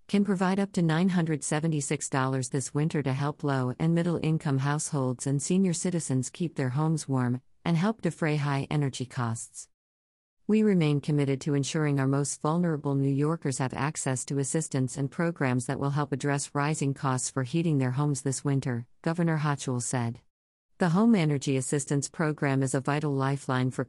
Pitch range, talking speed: 135-160 Hz, 170 wpm